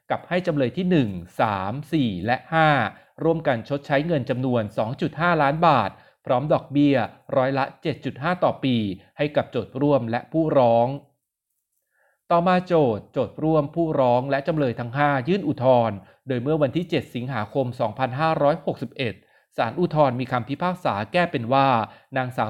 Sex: male